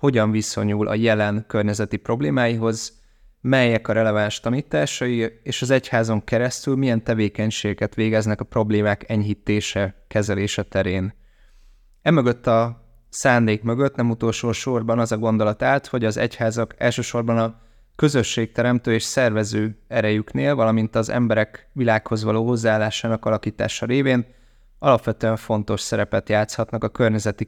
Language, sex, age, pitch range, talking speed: Hungarian, male, 20-39, 105-120 Hz, 120 wpm